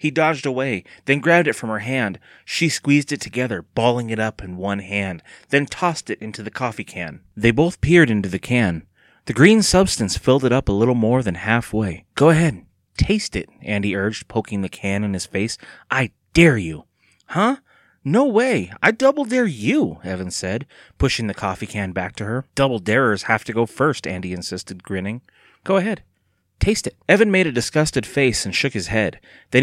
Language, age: English, 30-49